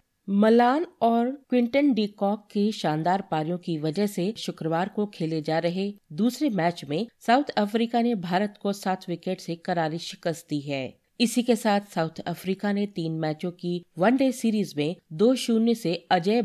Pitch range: 165-225 Hz